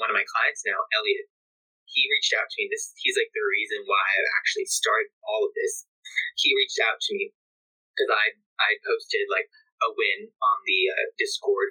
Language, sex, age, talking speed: English, male, 20-39, 200 wpm